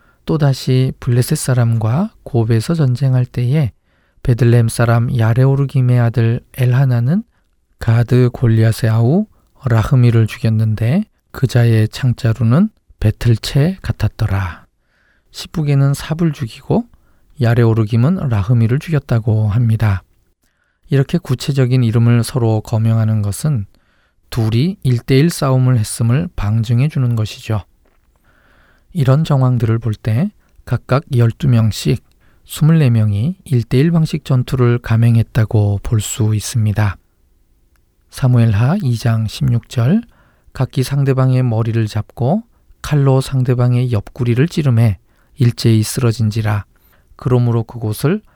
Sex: male